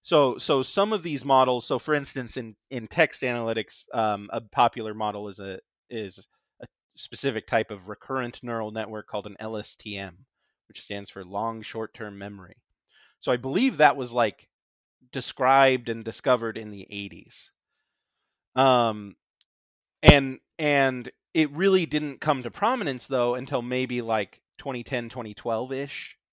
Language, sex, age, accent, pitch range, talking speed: English, male, 30-49, American, 105-130 Hz, 145 wpm